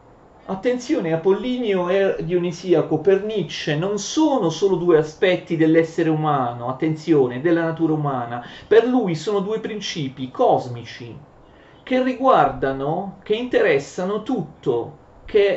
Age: 40-59